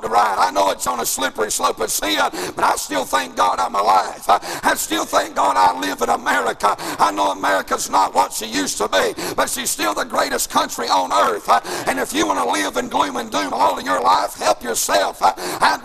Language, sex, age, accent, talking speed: English, male, 60-79, American, 225 wpm